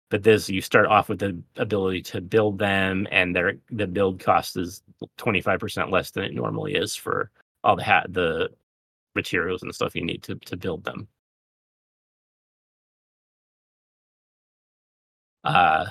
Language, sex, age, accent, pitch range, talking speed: English, male, 30-49, American, 95-120 Hz, 150 wpm